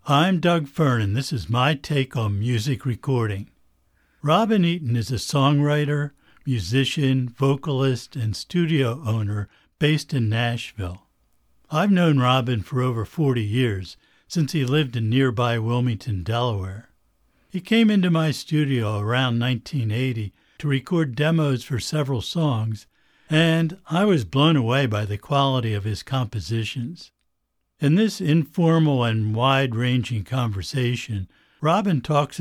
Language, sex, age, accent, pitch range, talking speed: English, male, 60-79, American, 115-150 Hz, 130 wpm